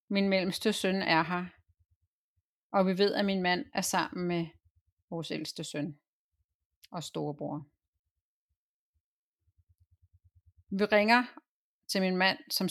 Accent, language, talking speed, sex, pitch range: native, Danish, 120 wpm, female, 160-215 Hz